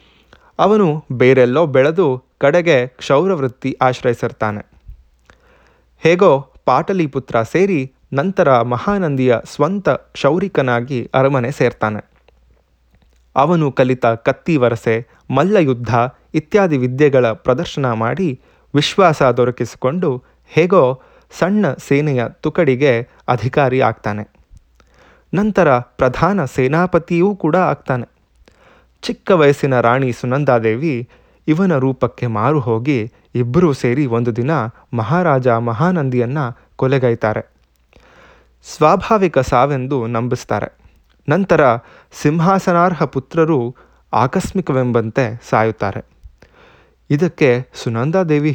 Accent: native